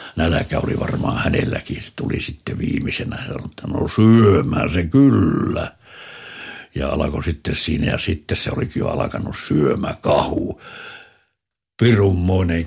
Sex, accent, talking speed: male, native, 130 wpm